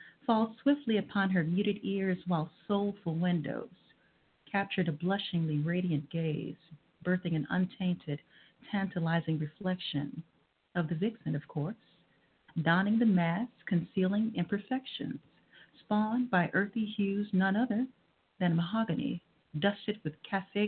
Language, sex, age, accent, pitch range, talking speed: English, female, 50-69, American, 165-200 Hz, 115 wpm